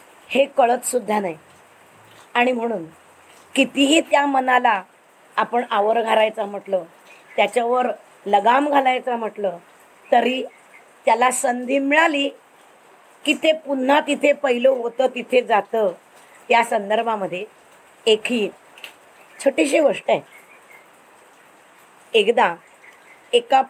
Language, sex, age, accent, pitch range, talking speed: Marathi, female, 20-39, native, 215-275 Hz, 95 wpm